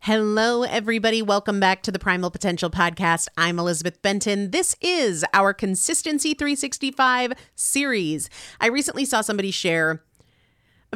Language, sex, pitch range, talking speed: English, female, 185-235 Hz, 130 wpm